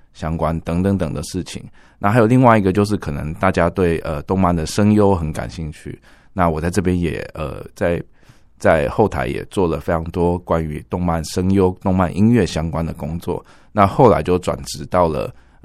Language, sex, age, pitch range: Chinese, male, 20-39, 80-95 Hz